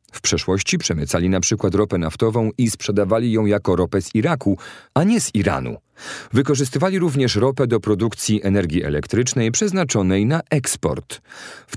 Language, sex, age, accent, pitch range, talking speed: Polish, male, 40-59, native, 100-140 Hz, 150 wpm